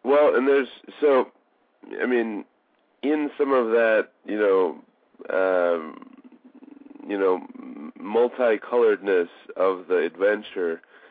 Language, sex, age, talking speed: English, male, 40-59, 105 wpm